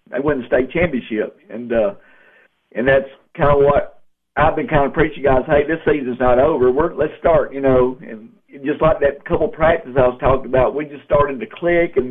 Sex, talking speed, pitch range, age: male, 220 wpm, 130-160 Hz, 50-69